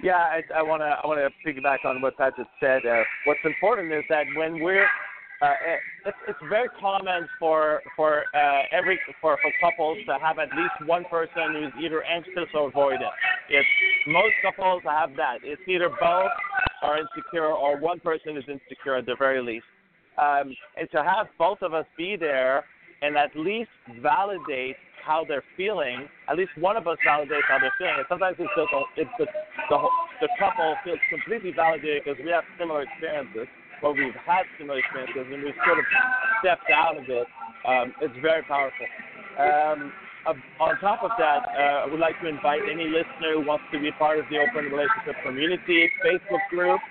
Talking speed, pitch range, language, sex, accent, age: 180 wpm, 145-185 Hz, English, male, American, 50-69